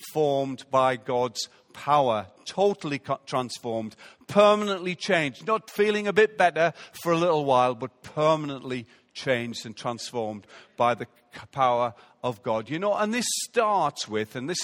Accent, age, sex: British, 50-69, male